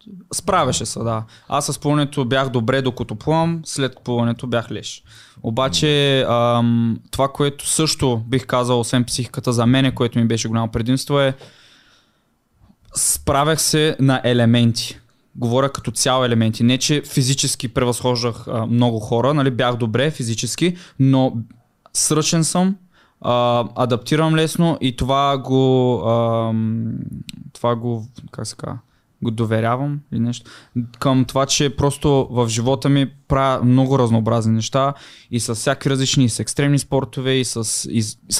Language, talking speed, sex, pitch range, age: Bulgarian, 135 wpm, male, 120-140 Hz, 20-39